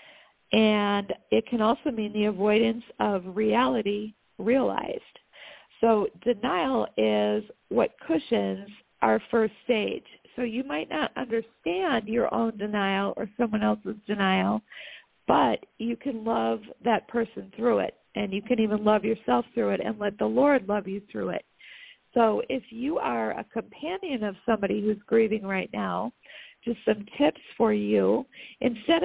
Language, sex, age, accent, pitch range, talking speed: English, female, 50-69, American, 205-255 Hz, 150 wpm